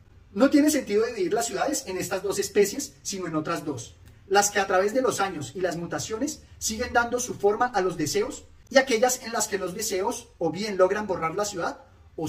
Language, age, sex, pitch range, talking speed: Spanish, 30-49, male, 150-225 Hz, 220 wpm